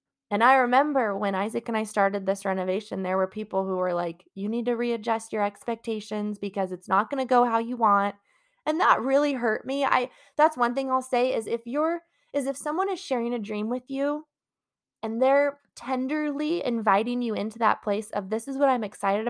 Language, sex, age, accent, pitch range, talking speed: English, female, 20-39, American, 200-265 Hz, 210 wpm